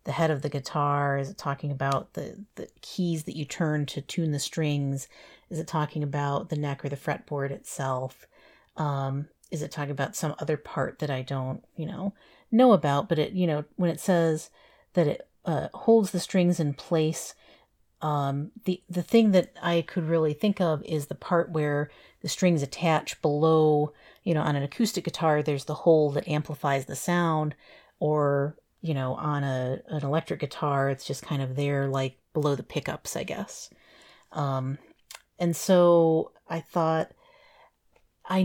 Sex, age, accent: female, 40-59, American